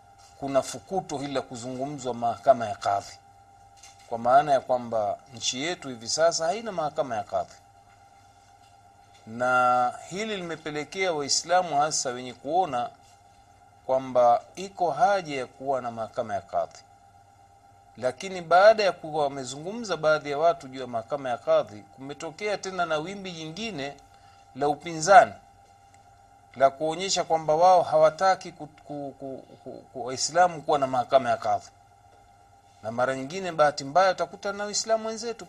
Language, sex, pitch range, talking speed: Swahili, male, 100-160 Hz, 135 wpm